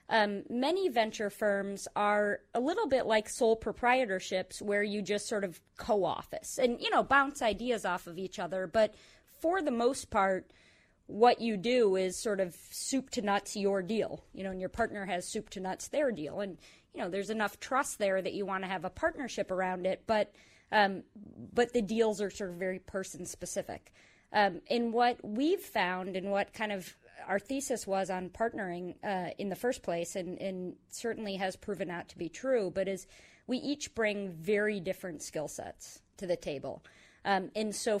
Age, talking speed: 30-49, 195 wpm